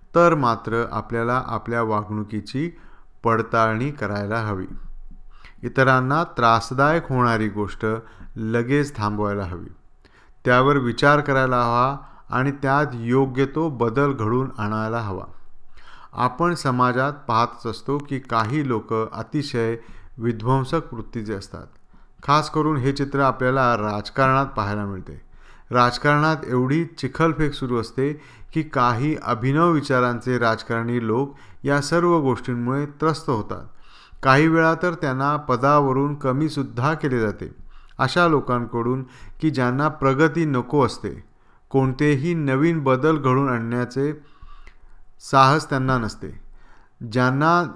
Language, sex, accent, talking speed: Marathi, male, native, 105 wpm